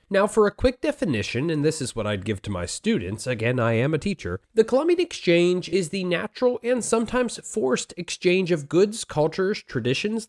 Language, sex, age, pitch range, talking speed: English, male, 30-49, 130-215 Hz, 190 wpm